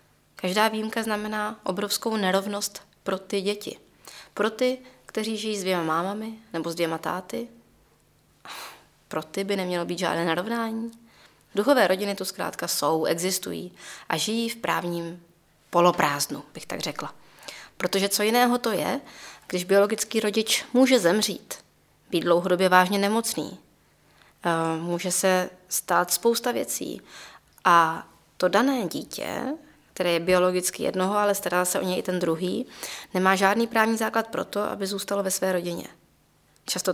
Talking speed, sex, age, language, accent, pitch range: 140 wpm, female, 20-39, Czech, native, 180-220 Hz